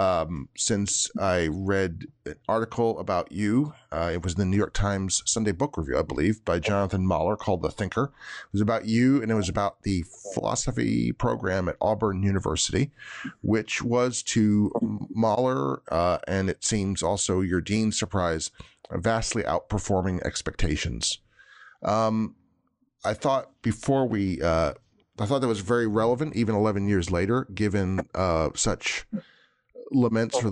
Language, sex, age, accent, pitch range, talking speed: English, male, 40-59, American, 95-110 Hz, 150 wpm